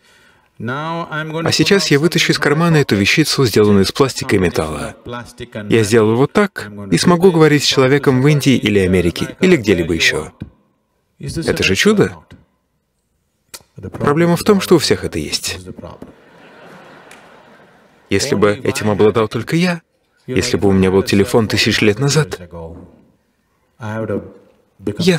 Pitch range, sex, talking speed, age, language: 105-165 Hz, male, 135 wpm, 30-49, Russian